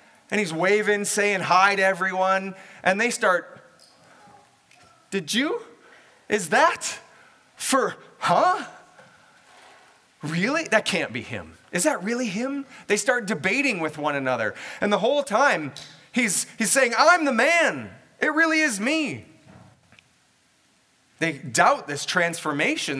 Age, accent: 20-39, American